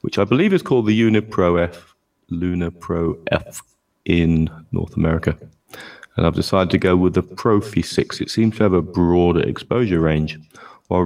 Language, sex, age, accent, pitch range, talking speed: English, male, 30-49, British, 85-100 Hz, 165 wpm